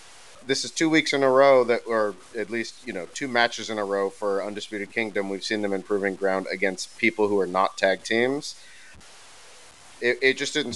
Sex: male